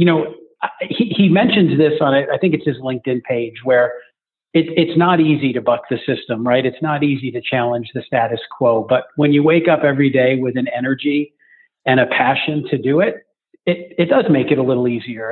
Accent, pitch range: American, 125-160 Hz